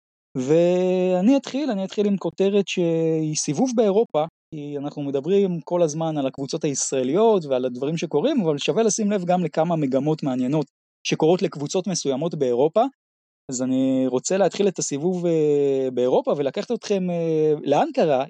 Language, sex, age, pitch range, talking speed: Hebrew, male, 20-39, 140-180 Hz, 140 wpm